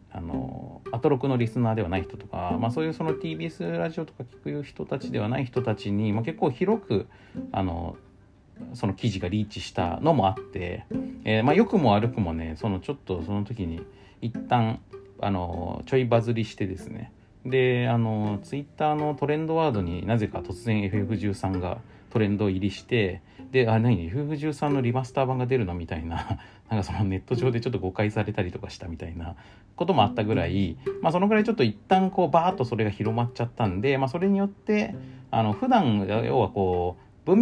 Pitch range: 95-130 Hz